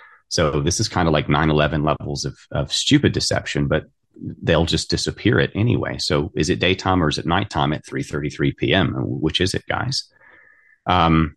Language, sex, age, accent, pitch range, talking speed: English, male, 30-49, American, 75-90 Hz, 195 wpm